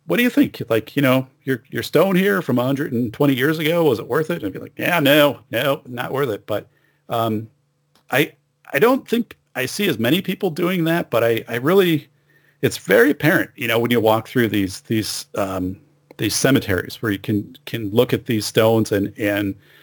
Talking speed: 210 wpm